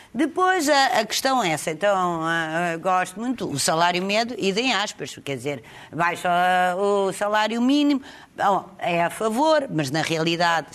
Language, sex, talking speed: Portuguese, female, 165 wpm